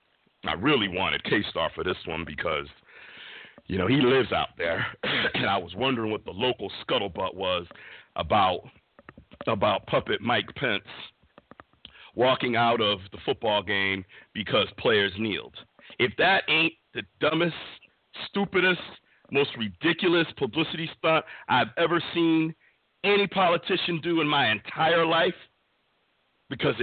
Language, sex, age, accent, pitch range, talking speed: English, male, 50-69, American, 115-170 Hz, 130 wpm